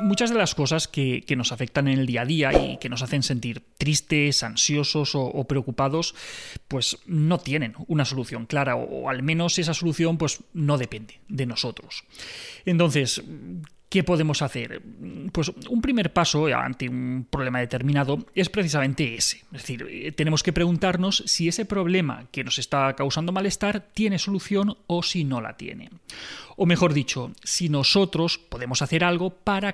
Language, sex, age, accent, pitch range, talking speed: Spanish, male, 30-49, Spanish, 135-185 Hz, 165 wpm